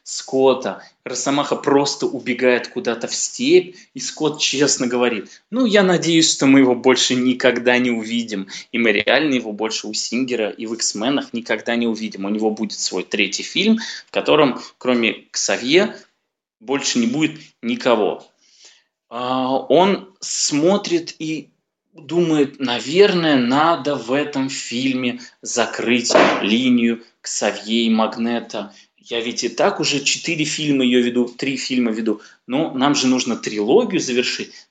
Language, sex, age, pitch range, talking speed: Russian, male, 20-39, 120-160 Hz, 140 wpm